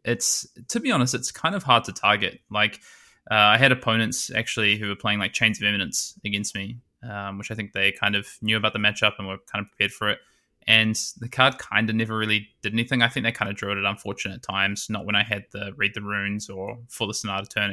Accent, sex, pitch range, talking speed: Australian, male, 100-120 Hz, 255 wpm